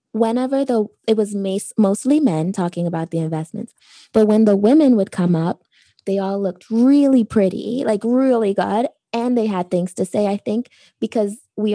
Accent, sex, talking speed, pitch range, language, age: American, female, 180 wpm, 190-225 Hz, English, 20-39